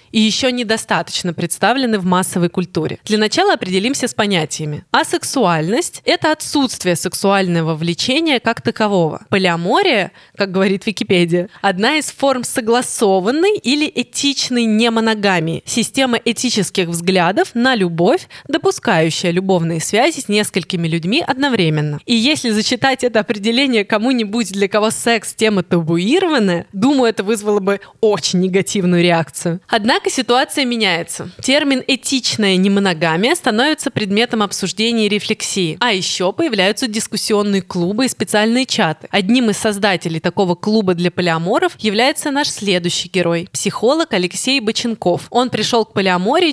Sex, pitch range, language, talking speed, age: female, 180-245 Hz, Russian, 130 wpm, 20-39